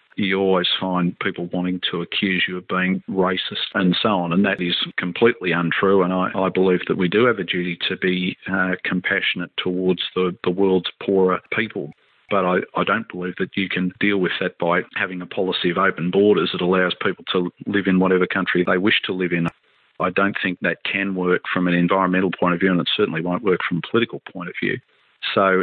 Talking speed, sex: 220 wpm, male